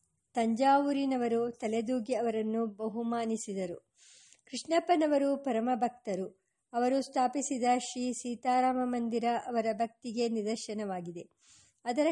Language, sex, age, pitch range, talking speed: English, male, 50-69, 220-255 Hz, 80 wpm